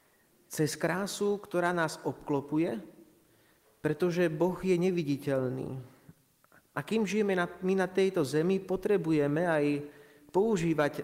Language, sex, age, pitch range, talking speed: Slovak, male, 30-49, 140-175 Hz, 110 wpm